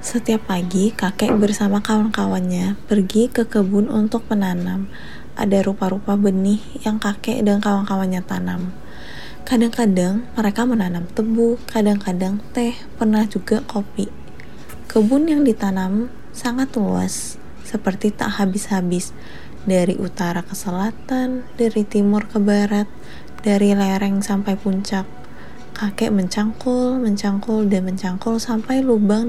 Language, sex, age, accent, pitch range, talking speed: Indonesian, female, 20-39, native, 190-225 Hz, 110 wpm